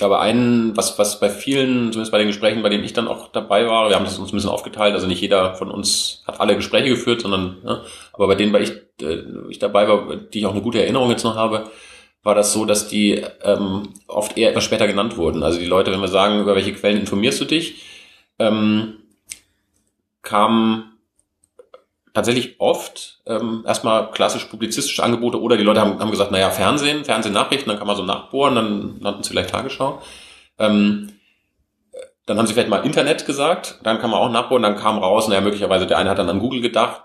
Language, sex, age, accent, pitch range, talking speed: German, male, 30-49, German, 100-115 Hz, 205 wpm